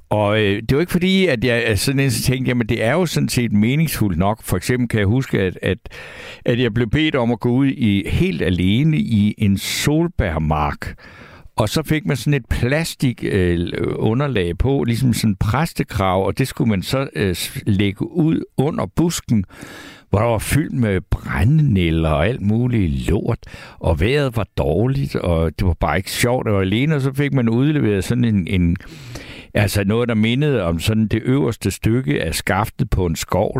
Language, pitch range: Danish, 95-135 Hz